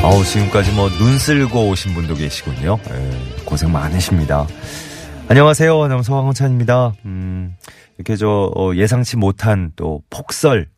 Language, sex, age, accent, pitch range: Korean, male, 30-49, native, 85-115 Hz